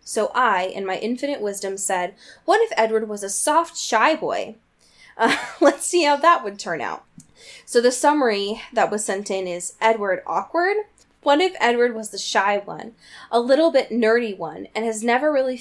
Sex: female